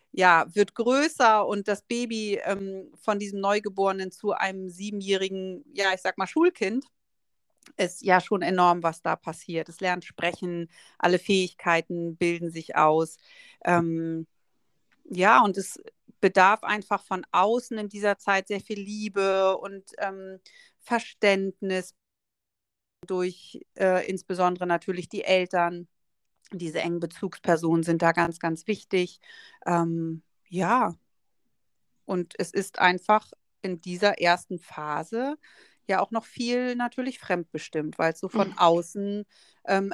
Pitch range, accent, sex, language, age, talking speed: 175-205 Hz, German, female, German, 40-59, 130 wpm